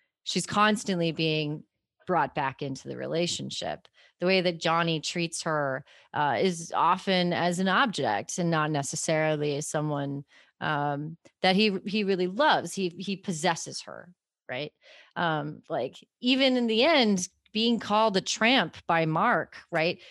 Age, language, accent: 30-49, English, American